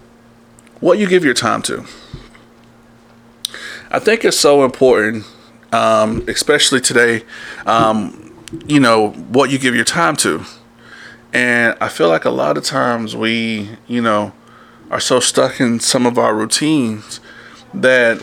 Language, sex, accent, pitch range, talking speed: English, male, American, 110-120 Hz, 140 wpm